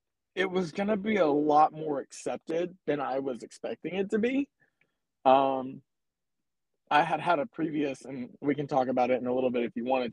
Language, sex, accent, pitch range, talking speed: English, male, American, 135-175 Hz, 200 wpm